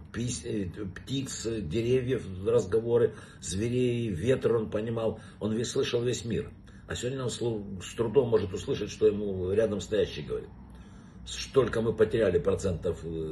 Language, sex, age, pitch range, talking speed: Russian, male, 50-69, 100-120 Hz, 125 wpm